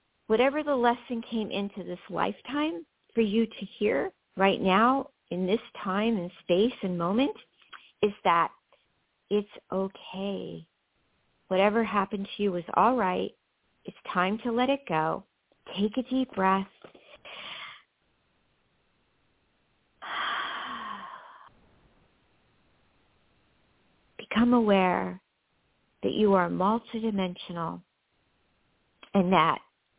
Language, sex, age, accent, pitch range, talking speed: English, female, 50-69, American, 185-240 Hz, 100 wpm